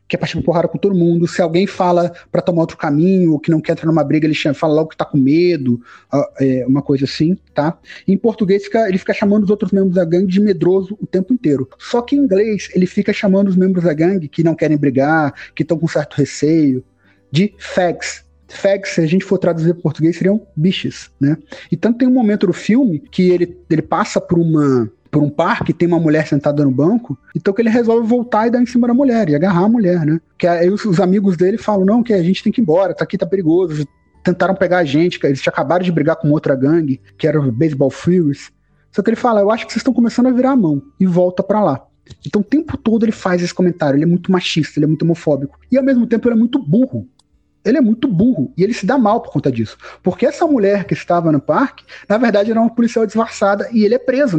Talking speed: 250 wpm